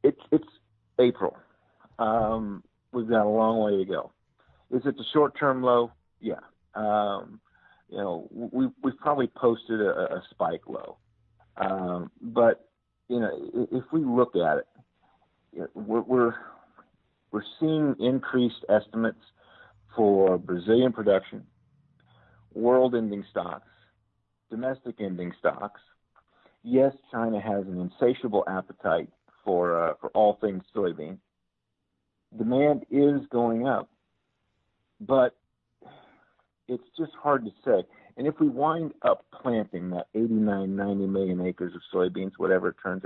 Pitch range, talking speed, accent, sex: 105-125 Hz, 125 wpm, American, male